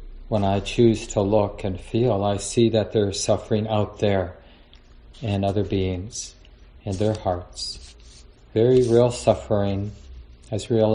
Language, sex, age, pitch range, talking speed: English, male, 40-59, 100-110 Hz, 140 wpm